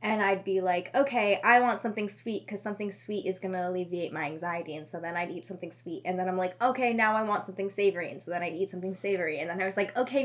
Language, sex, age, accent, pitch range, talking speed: English, female, 10-29, American, 185-265 Hz, 280 wpm